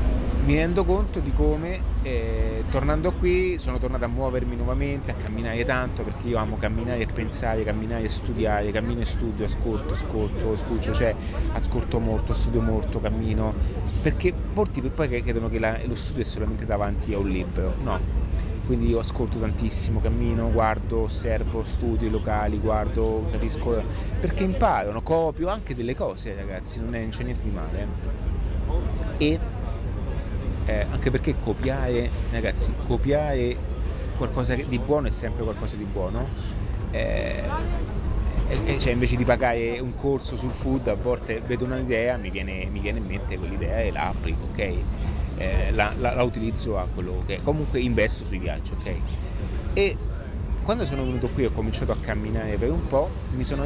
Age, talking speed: 30-49, 160 wpm